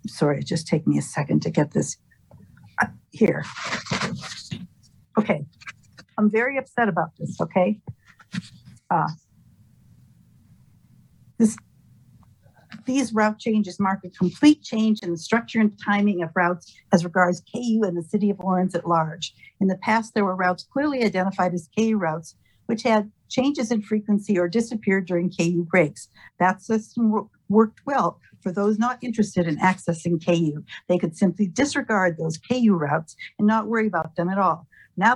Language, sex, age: English, female, 60-79